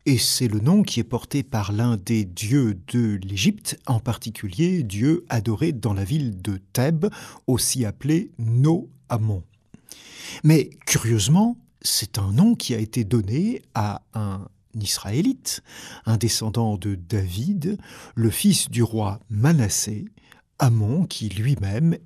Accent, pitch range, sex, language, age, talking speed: French, 110-145 Hz, male, French, 60-79, 135 wpm